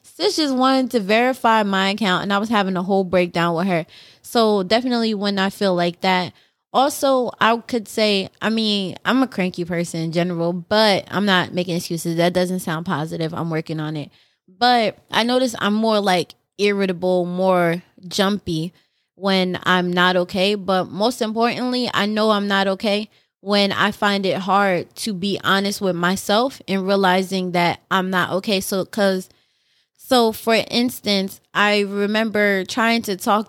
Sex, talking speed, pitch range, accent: female, 175 wpm, 180-215 Hz, American